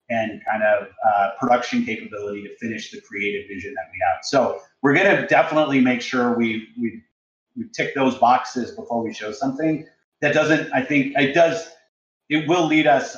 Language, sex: English, male